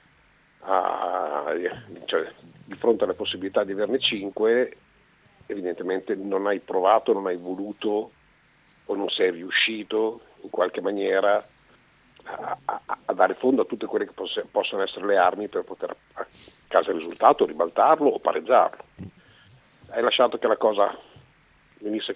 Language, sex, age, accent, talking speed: Italian, male, 50-69, native, 140 wpm